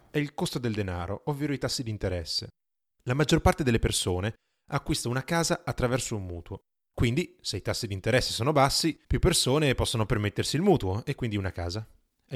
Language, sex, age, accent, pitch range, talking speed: English, male, 30-49, Italian, 95-130 Hz, 195 wpm